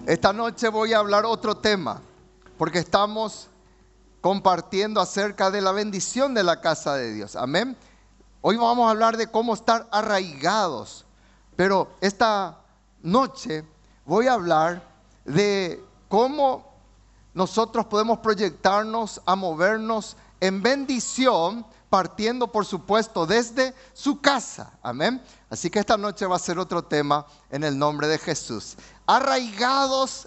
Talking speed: 130 wpm